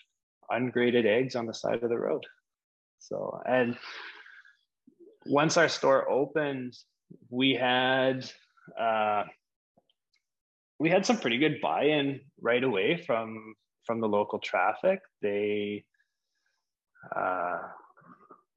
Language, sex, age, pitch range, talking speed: English, male, 20-39, 105-135 Hz, 105 wpm